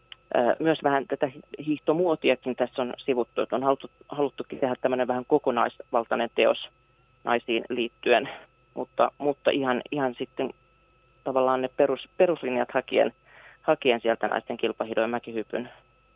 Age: 30-49